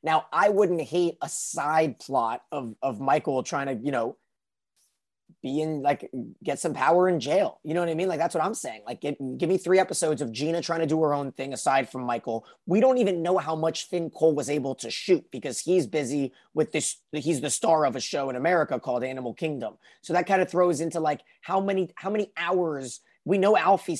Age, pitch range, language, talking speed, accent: 30-49, 140-180 Hz, English, 230 wpm, American